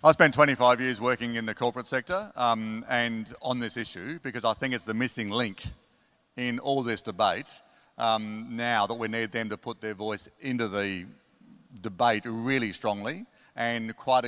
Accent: Australian